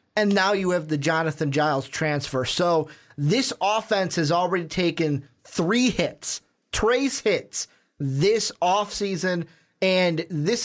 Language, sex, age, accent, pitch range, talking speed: English, male, 30-49, American, 155-200 Hz, 130 wpm